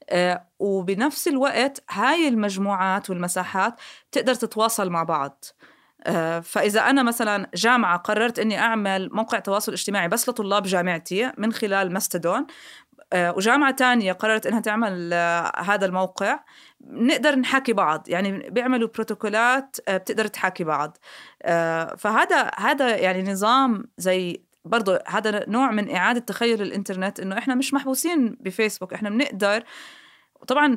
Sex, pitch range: female, 180-245 Hz